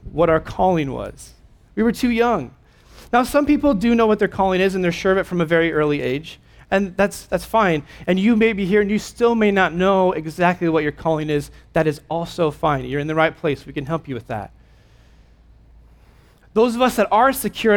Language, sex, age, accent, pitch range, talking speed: English, male, 30-49, American, 145-205 Hz, 230 wpm